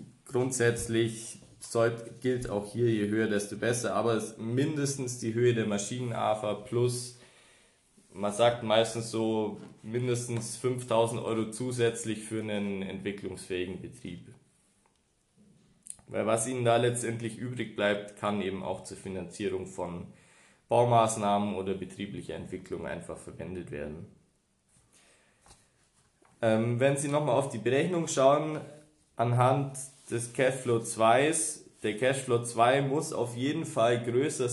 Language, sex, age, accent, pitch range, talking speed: German, male, 20-39, German, 105-125 Hz, 120 wpm